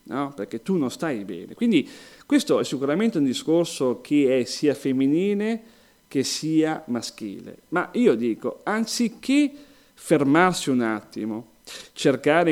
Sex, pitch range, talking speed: male, 145-235 Hz, 130 wpm